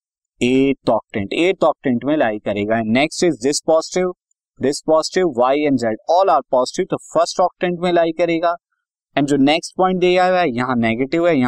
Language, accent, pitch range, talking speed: Hindi, native, 125-180 Hz, 140 wpm